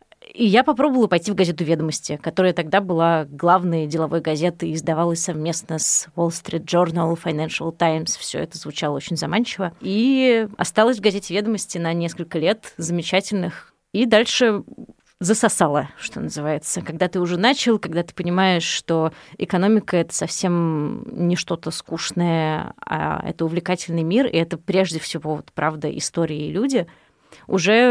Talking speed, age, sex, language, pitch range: 145 wpm, 20-39, female, Russian, 165-210 Hz